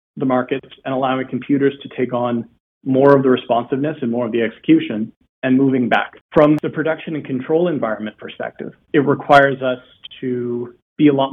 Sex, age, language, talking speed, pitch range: male, 30-49, English, 180 wpm, 120-135 Hz